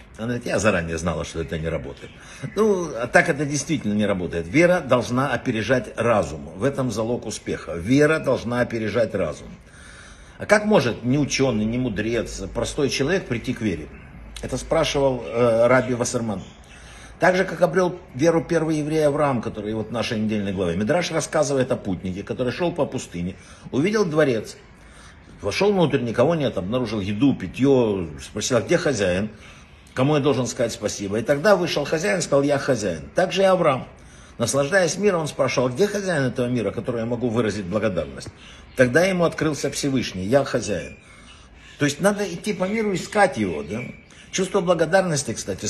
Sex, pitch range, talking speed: male, 110-155 Hz, 165 wpm